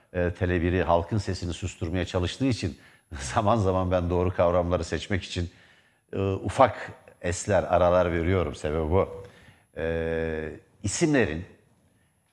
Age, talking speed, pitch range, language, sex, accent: 60-79, 105 wpm, 95-115 Hz, Turkish, male, native